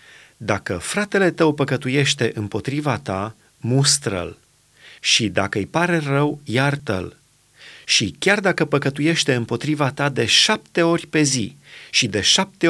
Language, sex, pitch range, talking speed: Romanian, male, 115-155 Hz, 130 wpm